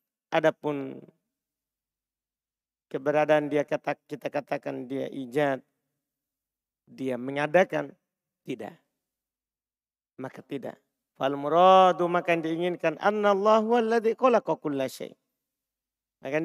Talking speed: 75 wpm